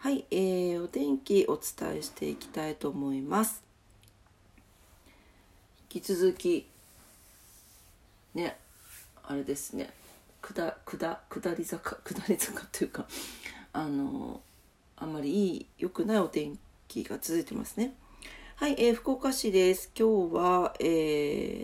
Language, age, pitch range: Japanese, 40-59, 155-225 Hz